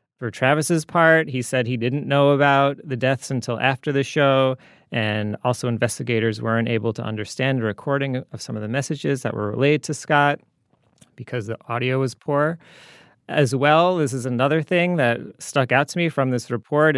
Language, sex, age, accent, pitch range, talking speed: English, male, 30-49, American, 115-145 Hz, 185 wpm